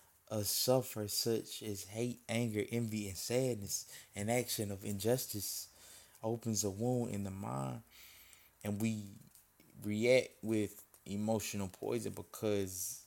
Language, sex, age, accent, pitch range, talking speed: English, male, 20-39, American, 100-120 Hz, 120 wpm